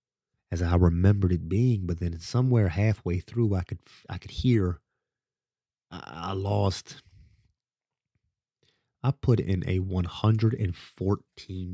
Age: 30-49